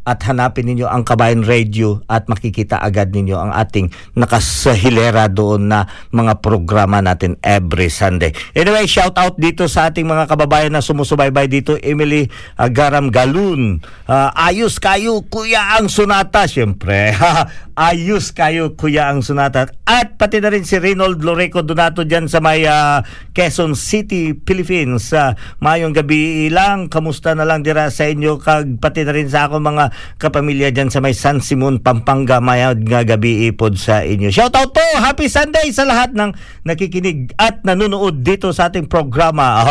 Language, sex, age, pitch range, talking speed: Filipino, male, 50-69, 120-170 Hz, 160 wpm